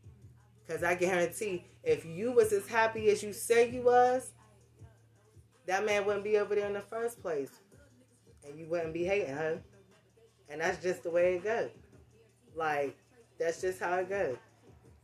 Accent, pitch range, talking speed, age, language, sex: American, 180-275 Hz, 170 wpm, 20-39, English, female